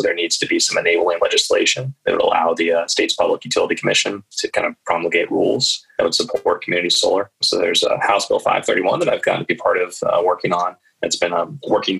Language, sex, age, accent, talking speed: English, male, 20-39, American, 240 wpm